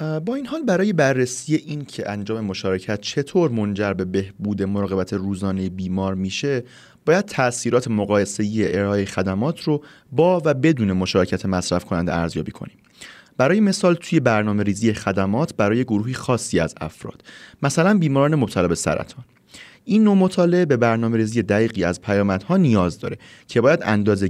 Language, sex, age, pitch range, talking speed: Persian, male, 30-49, 100-140 Hz, 150 wpm